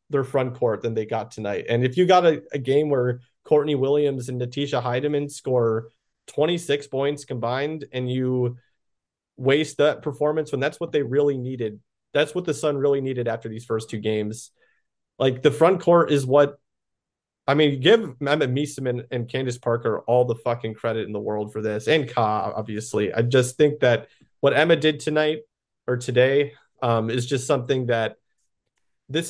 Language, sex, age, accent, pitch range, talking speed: English, male, 30-49, American, 120-145 Hz, 180 wpm